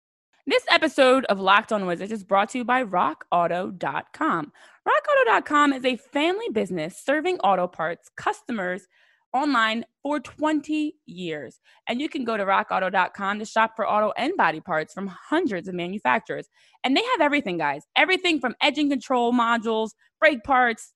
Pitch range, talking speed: 195-290 Hz, 155 wpm